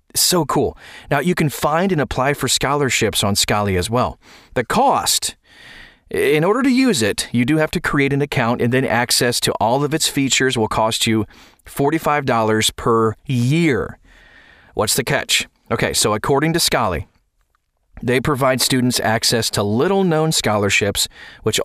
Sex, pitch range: male, 115-155 Hz